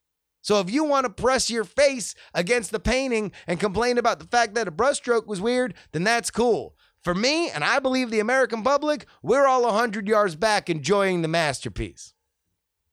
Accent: American